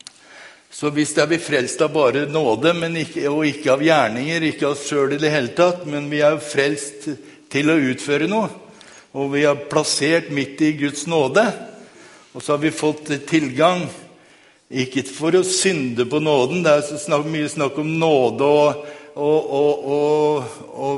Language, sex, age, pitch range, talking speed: Swedish, male, 60-79, 140-160 Hz, 160 wpm